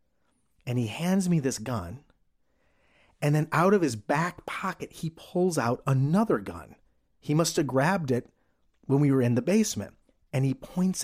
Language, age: English, 40-59